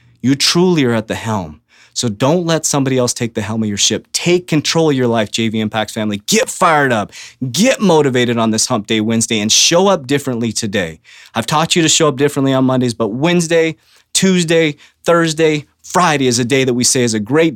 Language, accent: English, American